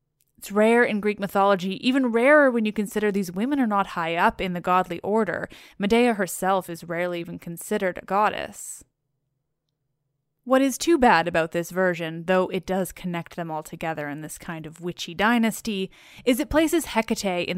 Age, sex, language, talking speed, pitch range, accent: 20-39, female, English, 180 wpm, 170-215 Hz, American